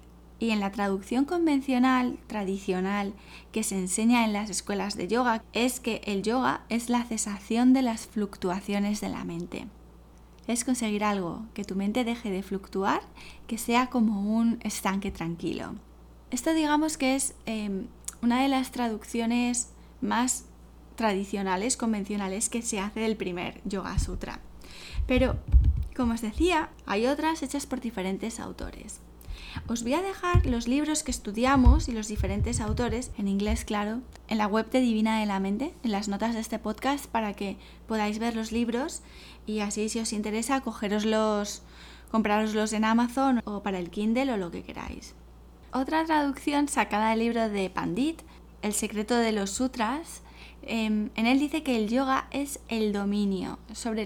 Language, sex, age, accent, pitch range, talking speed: English, female, 20-39, Spanish, 200-250 Hz, 160 wpm